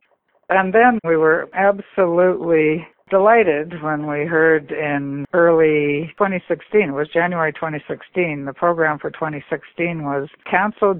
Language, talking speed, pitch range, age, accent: English, 120 wpm, 150-185 Hz, 60-79, American